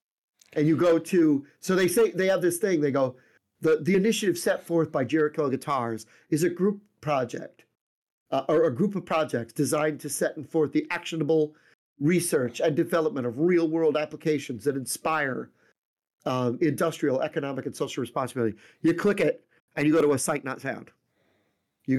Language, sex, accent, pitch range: English, male, American, 135-175 Hz